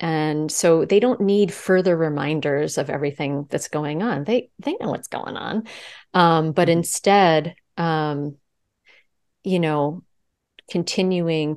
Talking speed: 130 wpm